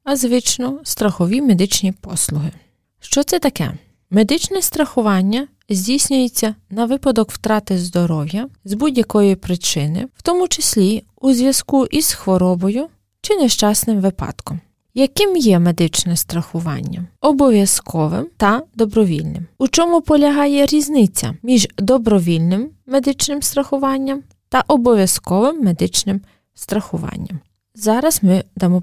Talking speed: 105 wpm